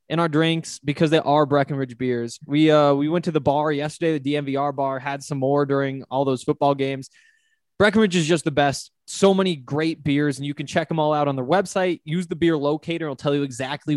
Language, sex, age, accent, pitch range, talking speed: English, male, 20-39, American, 140-170 Hz, 230 wpm